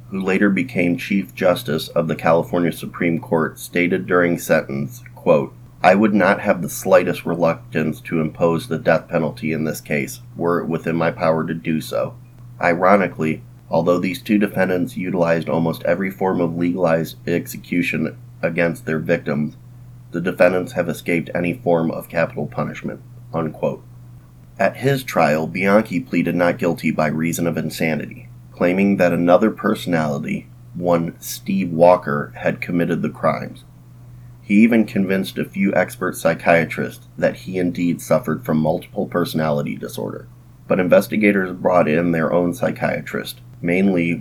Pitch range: 80-100 Hz